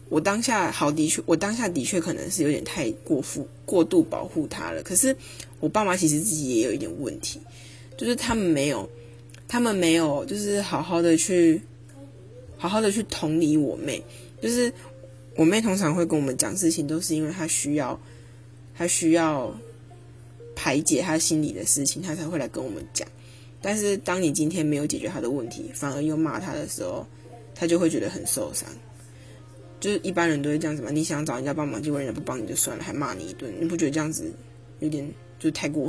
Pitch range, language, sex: 125-170 Hz, Chinese, female